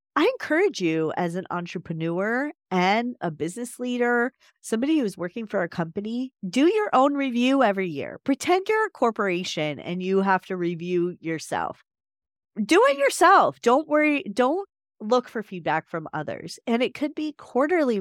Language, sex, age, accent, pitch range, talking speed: English, female, 30-49, American, 170-250 Hz, 160 wpm